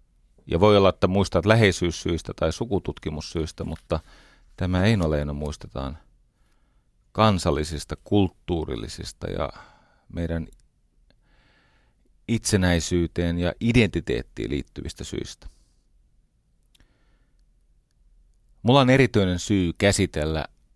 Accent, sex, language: native, male, Finnish